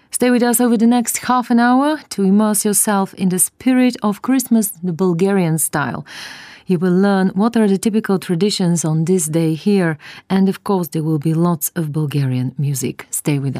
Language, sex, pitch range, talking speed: English, female, 160-215 Hz, 195 wpm